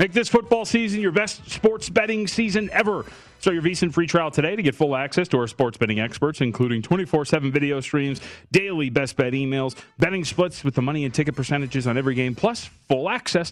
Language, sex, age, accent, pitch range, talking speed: English, male, 30-49, American, 120-155 Hz, 210 wpm